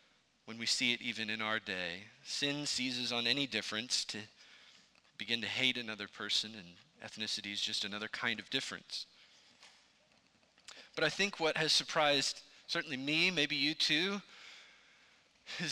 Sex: male